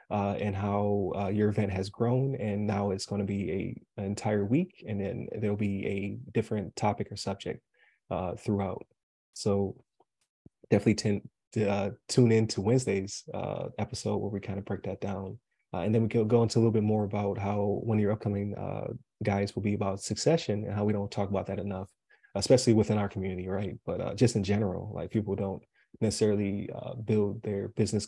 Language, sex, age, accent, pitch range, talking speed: English, male, 20-39, American, 100-110 Hz, 200 wpm